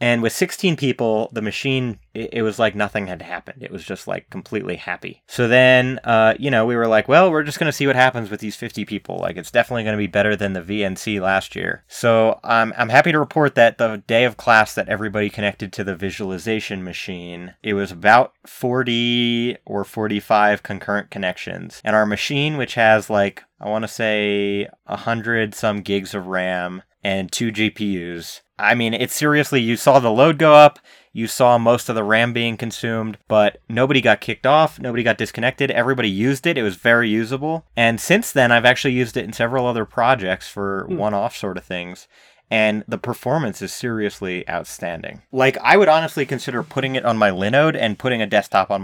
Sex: male